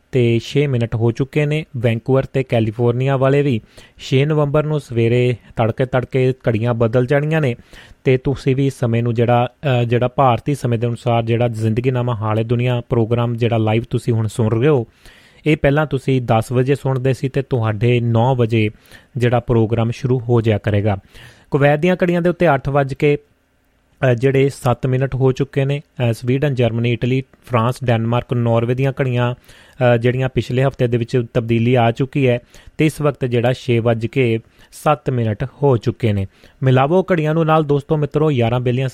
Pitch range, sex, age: 120-140 Hz, male, 30-49